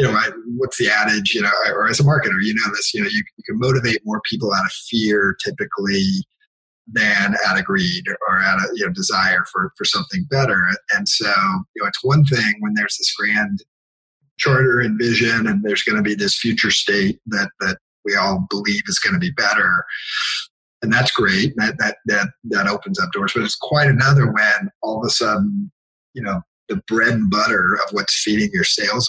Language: English